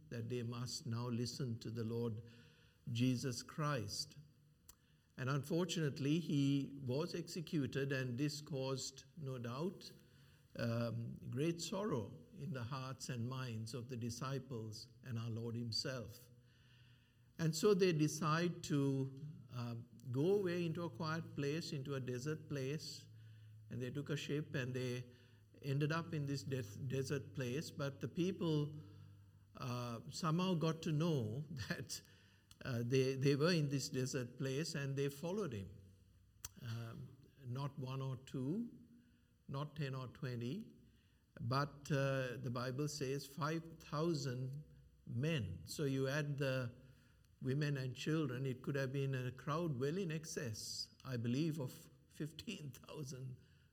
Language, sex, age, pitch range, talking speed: English, male, 60-79, 120-150 Hz, 135 wpm